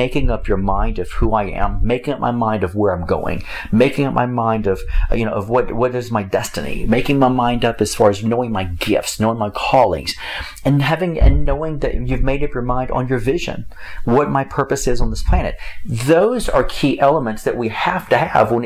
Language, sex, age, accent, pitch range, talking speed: English, male, 40-59, American, 105-130 Hz, 230 wpm